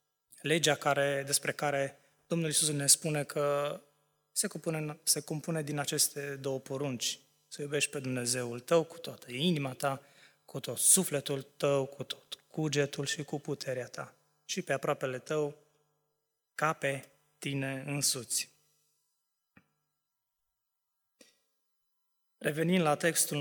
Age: 20-39